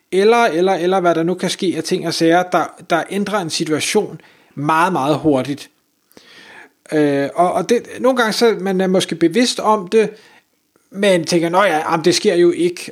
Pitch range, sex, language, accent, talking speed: 160-215 Hz, male, Danish, native, 190 wpm